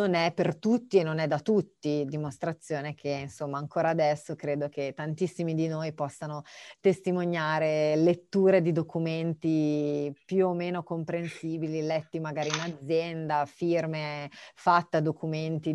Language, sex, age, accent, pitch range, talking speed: Italian, female, 30-49, native, 150-175 Hz, 135 wpm